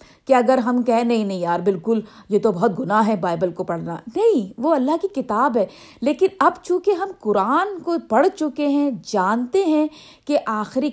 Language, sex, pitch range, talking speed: Urdu, female, 205-275 Hz, 185 wpm